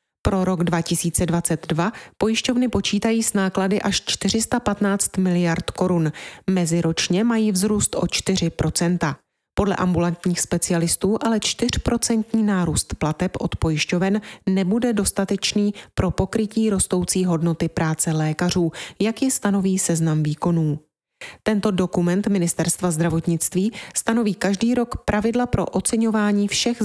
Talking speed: 110 wpm